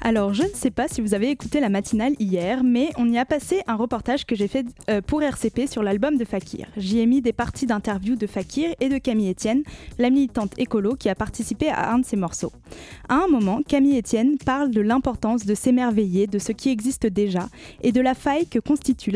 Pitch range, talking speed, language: 215-260 Hz, 225 wpm, French